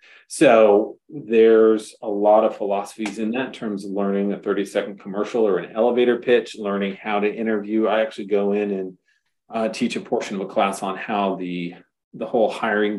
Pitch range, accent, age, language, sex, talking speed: 100-115 Hz, American, 40-59, English, male, 190 wpm